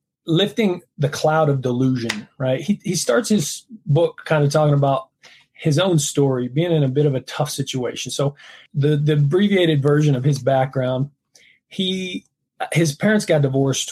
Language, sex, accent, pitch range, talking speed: English, male, American, 130-150 Hz, 170 wpm